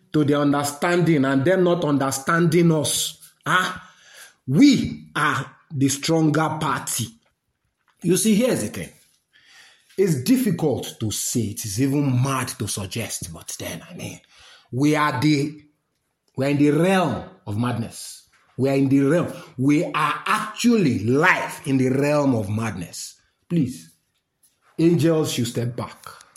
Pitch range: 135-205 Hz